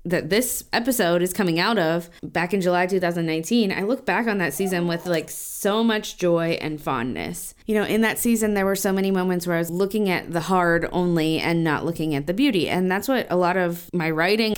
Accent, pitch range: American, 165-200 Hz